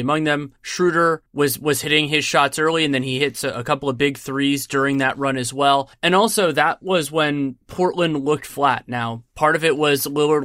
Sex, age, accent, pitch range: male, 20-39, American, 135-165 Hz